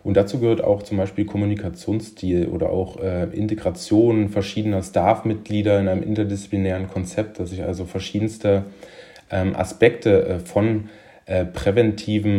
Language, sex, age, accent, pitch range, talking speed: German, male, 30-49, German, 95-105 Hz, 130 wpm